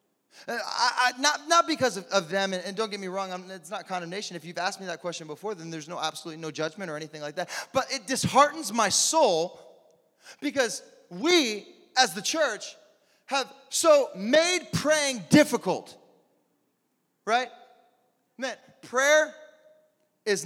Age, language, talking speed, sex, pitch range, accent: 20-39, English, 155 wpm, male, 210-305 Hz, American